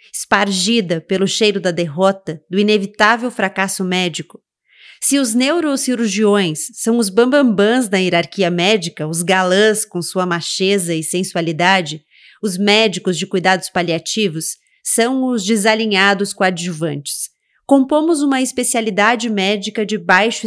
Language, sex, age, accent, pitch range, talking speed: Portuguese, female, 30-49, Brazilian, 185-230 Hz, 115 wpm